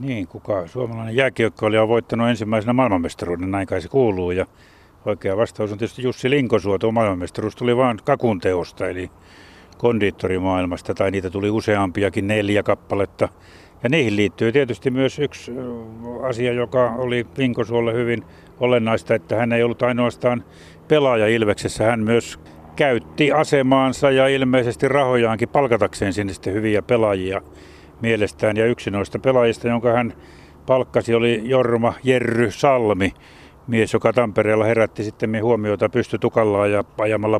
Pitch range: 100-120 Hz